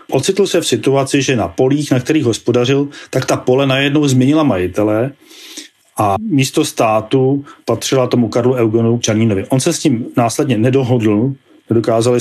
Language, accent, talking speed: Czech, native, 150 wpm